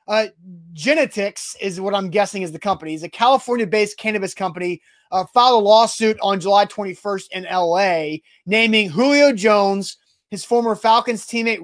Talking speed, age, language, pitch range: 160 wpm, 30-49, English, 200-245 Hz